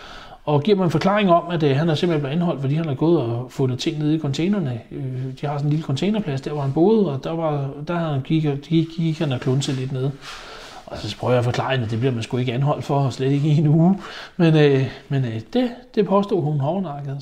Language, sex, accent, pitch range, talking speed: Danish, male, native, 135-165 Hz, 270 wpm